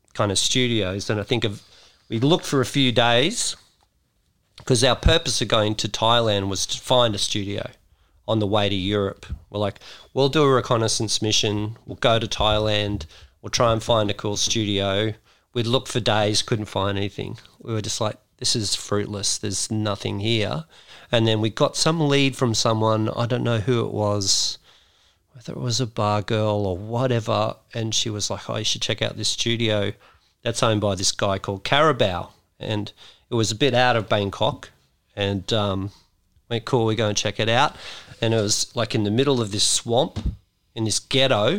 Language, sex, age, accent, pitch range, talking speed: English, male, 40-59, Australian, 100-120 Hz, 200 wpm